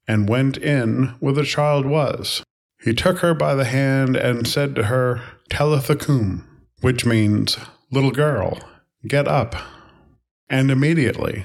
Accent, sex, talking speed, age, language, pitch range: American, male, 135 wpm, 40-59, English, 120-145 Hz